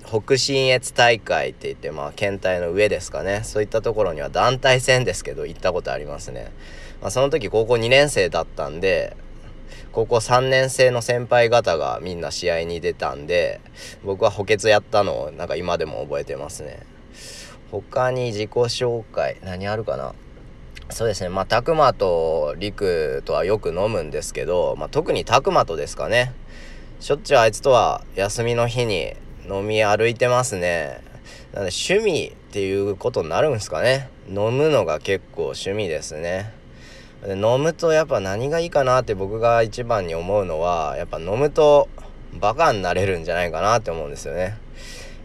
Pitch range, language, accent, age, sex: 100-155 Hz, Japanese, native, 20-39, male